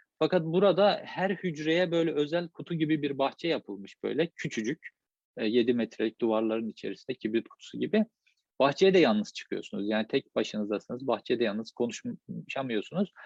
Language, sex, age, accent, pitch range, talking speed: Turkish, male, 40-59, native, 120-160 Hz, 140 wpm